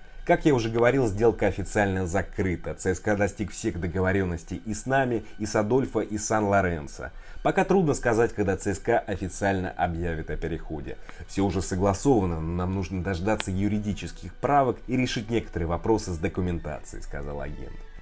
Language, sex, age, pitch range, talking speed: Russian, male, 30-49, 85-115 Hz, 155 wpm